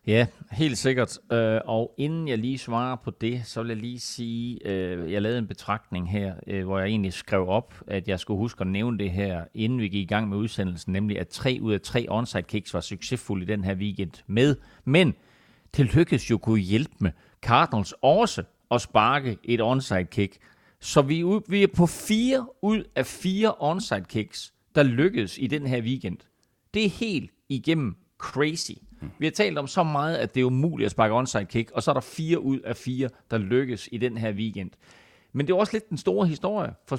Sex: male